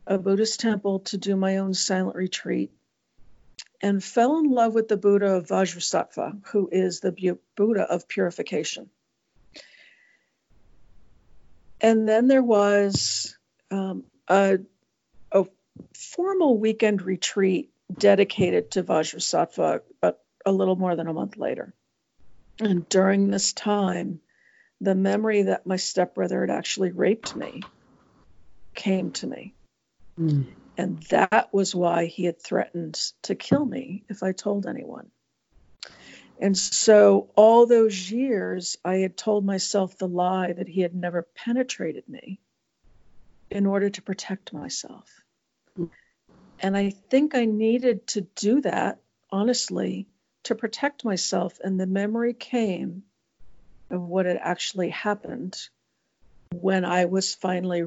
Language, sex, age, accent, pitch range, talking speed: English, female, 50-69, American, 180-210 Hz, 125 wpm